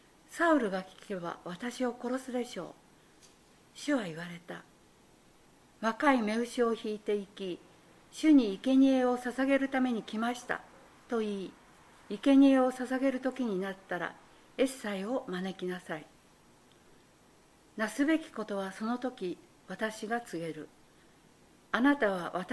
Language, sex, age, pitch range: Japanese, female, 50-69, 195-255 Hz